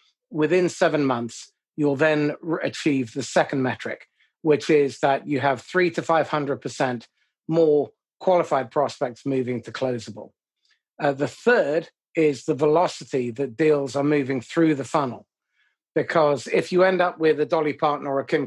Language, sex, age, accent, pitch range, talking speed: English, male, 40-59, British, 130-160 Hz, 155 wpm